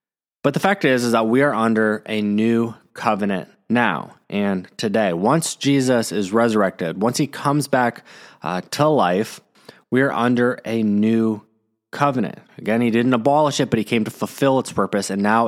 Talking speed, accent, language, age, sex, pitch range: 180 wpm, American, English, 20-39, male, 105-135 Hz